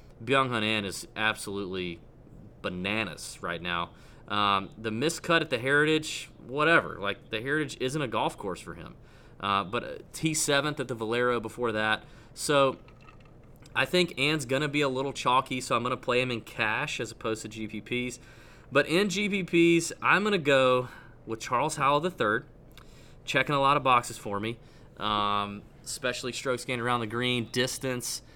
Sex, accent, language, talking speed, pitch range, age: male, American, English, 165 wpm, 110-140 Hz, 30-49